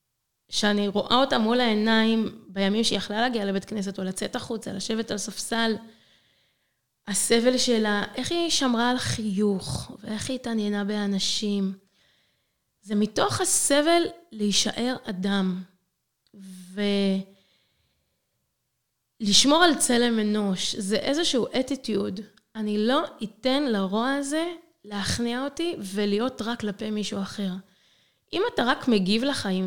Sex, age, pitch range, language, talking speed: female, 20-39, 200-265 Hz, Hebrew, 115 wpm